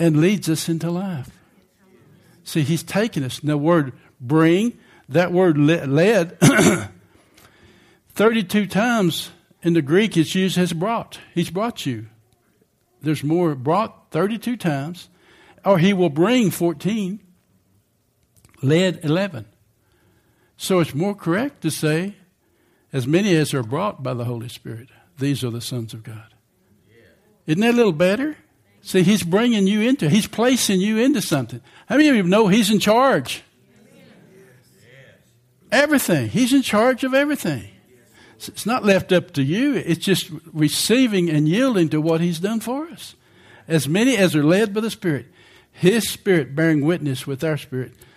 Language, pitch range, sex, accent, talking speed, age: English, 140-195 Hz, male, American, 150 wpm, 60-79